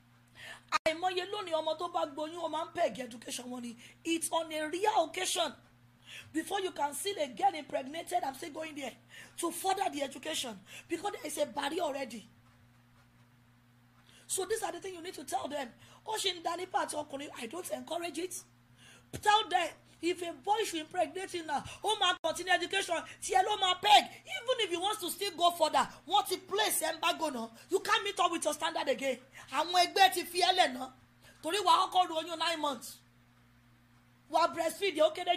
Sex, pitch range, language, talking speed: female, 245-365 Hz, English, 155 wpm